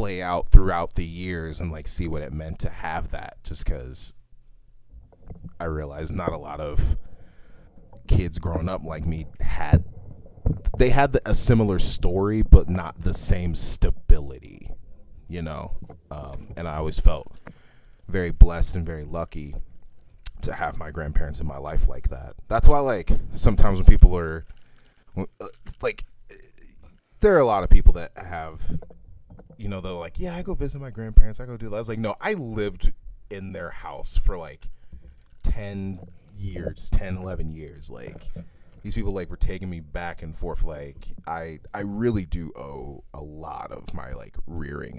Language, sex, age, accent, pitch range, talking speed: English, male, 30-49, American, 80-95 Hz, 170 wpm